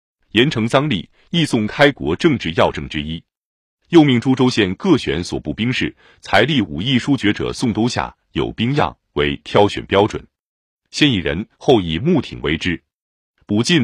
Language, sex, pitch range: Chinese, male, 90-135 Hz